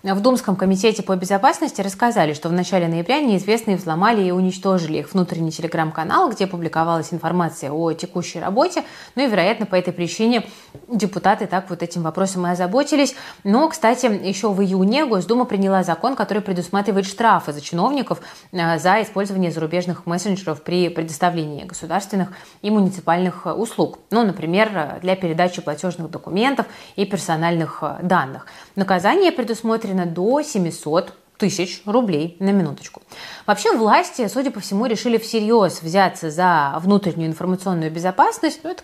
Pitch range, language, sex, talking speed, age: 170-215 Hz, Russian, female, 140 wpm, 20-39